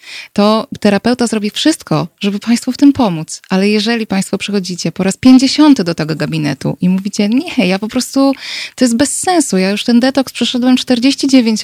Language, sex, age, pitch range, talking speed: Polish, female, 20-39, 175-240 Hz, 185 wpm